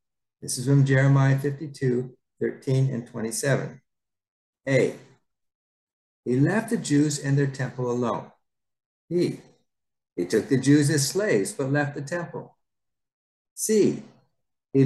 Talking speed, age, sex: 120 wpm, 60-79, male